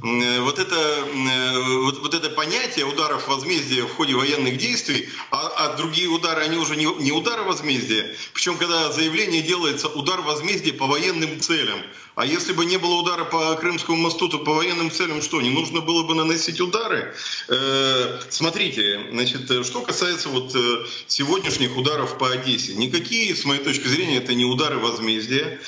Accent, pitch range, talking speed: native, 125-160 Hz, 160 wpm